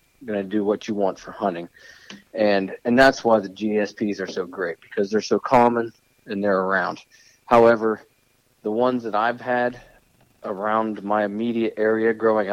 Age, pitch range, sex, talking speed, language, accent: 40-59, 95-120 Hz, male, 170 wpm, English, American